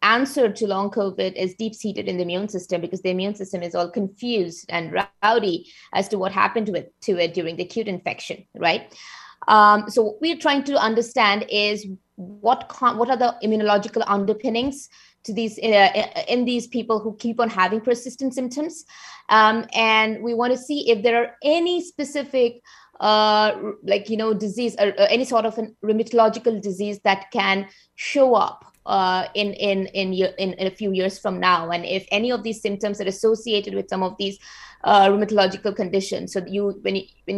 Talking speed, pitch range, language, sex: 190 wpm, 195-225 Hz, English, female